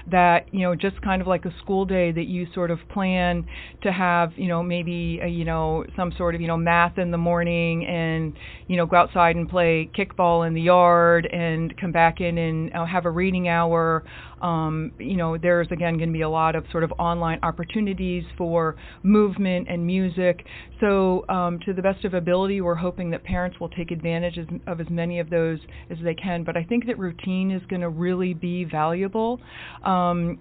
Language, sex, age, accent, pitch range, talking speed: English, female, 40-59, American, 165-185 Hz, 210 wpm